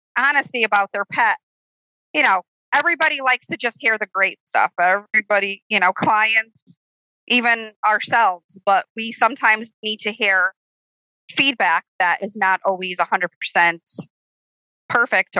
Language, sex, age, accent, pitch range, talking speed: English, female, 30-49, American, 185-230 Hz, 135 wpm